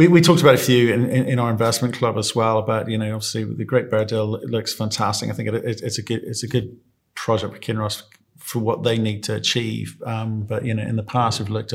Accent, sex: British, male